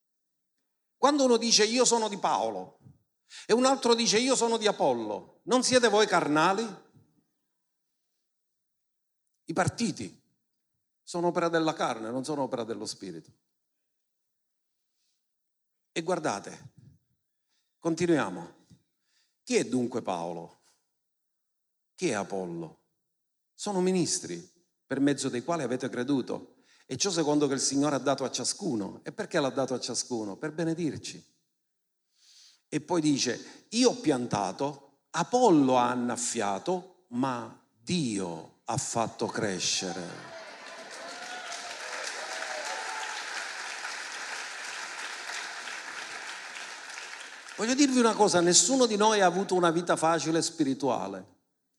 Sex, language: male, Italian